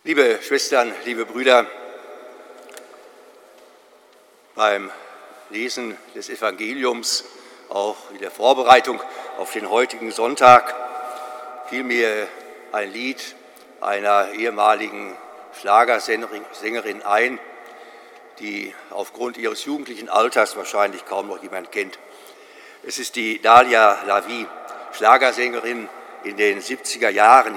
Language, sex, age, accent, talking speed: German, male, 60-79, German, 95 wpm